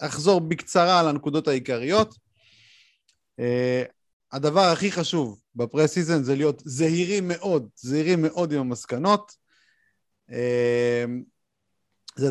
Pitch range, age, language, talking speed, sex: 120-170 Hz, 30-49, Hebrew, 95 wpm, male